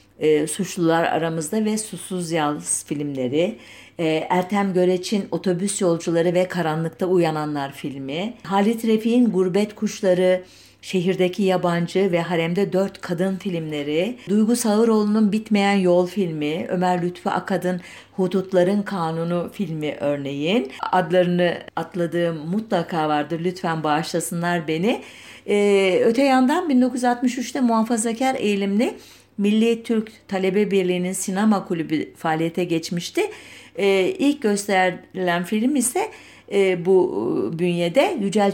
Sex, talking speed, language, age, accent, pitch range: female, 105 wpm, German, 50-69, Turkish, 170-210 Hz